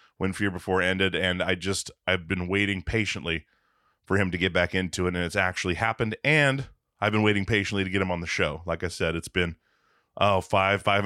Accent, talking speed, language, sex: American, 220 wpm, English, male